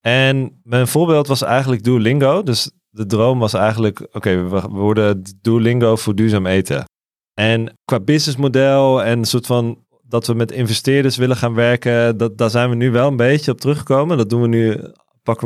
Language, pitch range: Dutch, 115-135 Hz